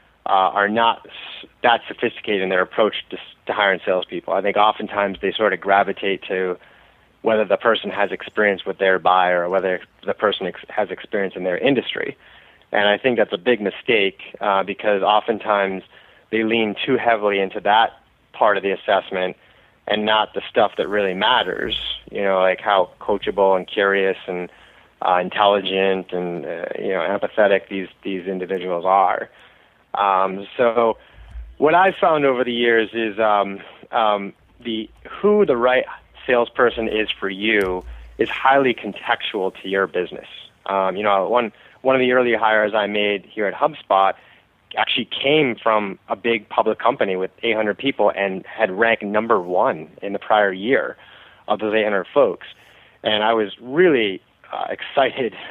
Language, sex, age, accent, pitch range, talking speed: English, male, 20-39, American, 95-115 Hz, 165 wpm